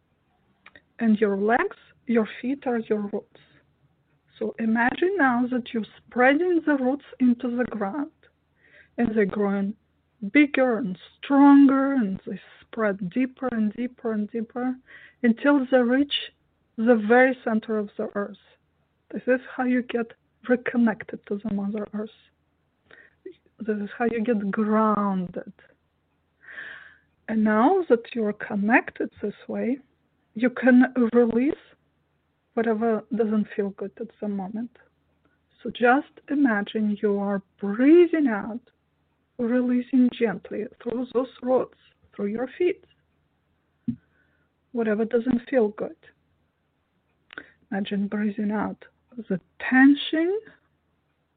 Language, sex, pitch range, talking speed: English, female, 215-255 Hz, 120 wpm